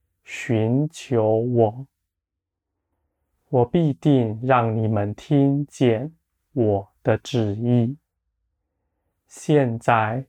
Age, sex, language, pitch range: 20-39, male, Chinese, 95-135 Hz